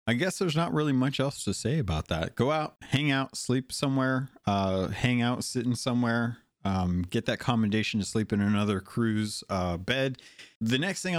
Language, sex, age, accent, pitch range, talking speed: English, male, 30-49, American, 100-130 Hz, 195 wpm